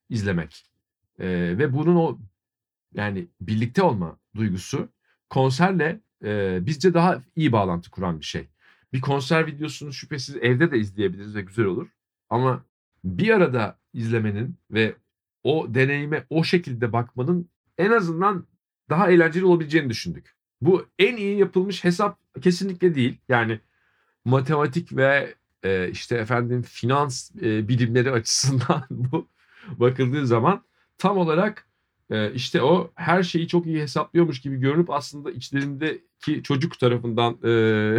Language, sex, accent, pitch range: Turkish, male, native, 110-155 Hz